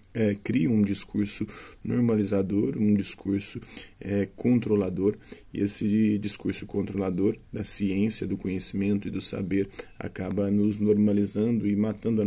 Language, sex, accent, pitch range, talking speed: Portuguese, male, Brazilian, 100-110 Hz, 115 wpm